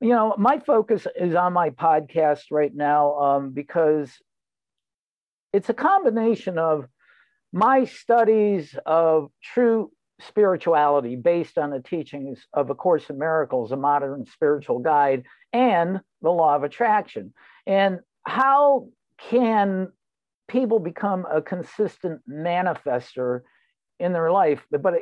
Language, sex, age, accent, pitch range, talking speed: English, male, 60-79, American, 150-210 Hz, 120 wpm